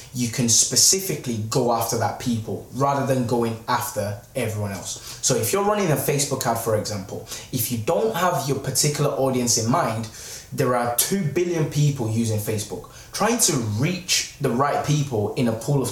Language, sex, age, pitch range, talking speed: English, male, 20-39, 110-135 Hz, 180 wpm